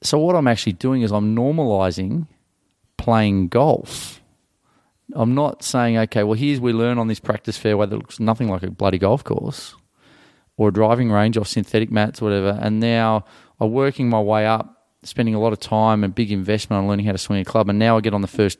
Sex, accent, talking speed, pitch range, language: male, Australian, 220 wpm, 100-115 Hz, English